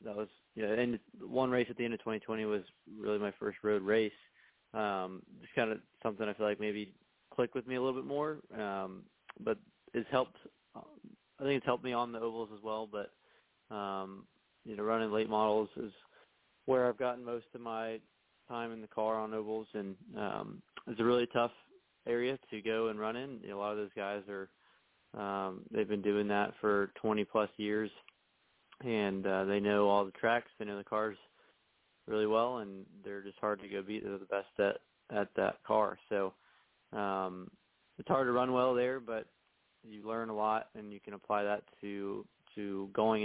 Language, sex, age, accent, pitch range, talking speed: English, male, 20-39, American, 100-115 Hz, 200 wpm